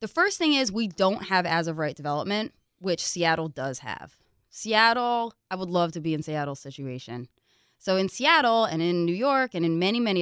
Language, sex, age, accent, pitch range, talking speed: English, female, 20-39, American, 150-210 Hz, 195 wpm